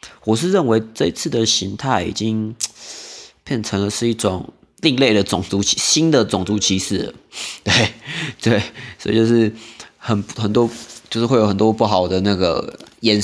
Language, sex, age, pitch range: Chinese, male, 20-39, 100-120 Hz